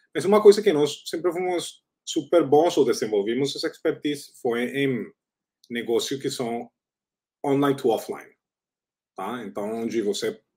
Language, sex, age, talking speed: Portuguese, male, 30-49, 150 wpm